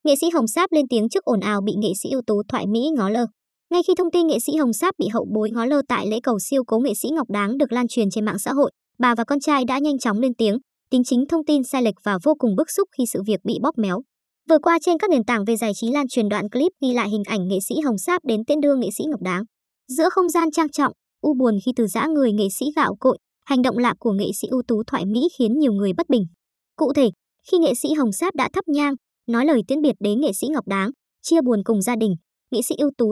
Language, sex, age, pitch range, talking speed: Vietnamese, male, 20-39, 225-295 Hz, 290 wpm